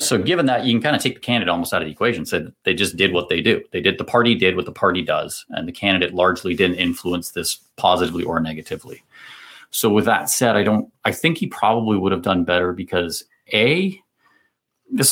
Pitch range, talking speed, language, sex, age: 90-125 Hz, 230 wpm, English, male, 30-49